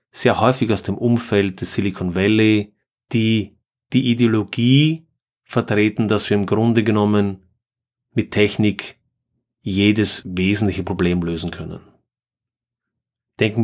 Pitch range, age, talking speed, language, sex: 100-120 Hz, 30-49, 110 wpm, German, male